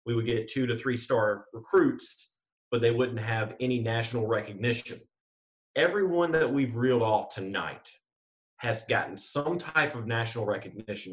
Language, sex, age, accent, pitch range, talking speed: English, male, 30-49, American, 110-135 Hz, 145 wpm